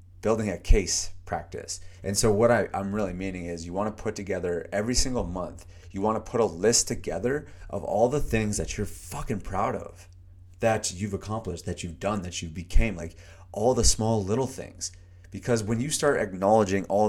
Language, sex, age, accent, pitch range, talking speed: English, male, 30-49, American, 90-115 Hz, 195 wpm